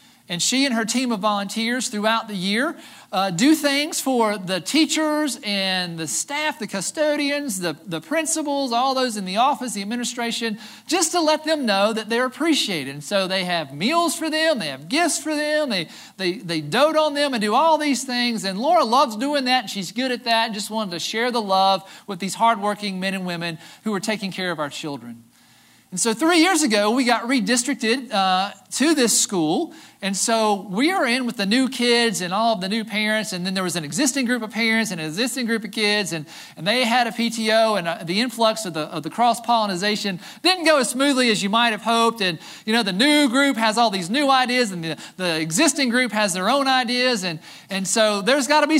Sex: male